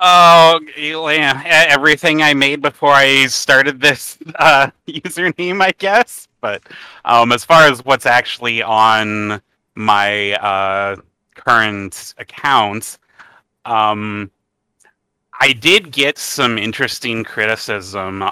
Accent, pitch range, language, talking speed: American, 100-140 Hz, English, 100 wpm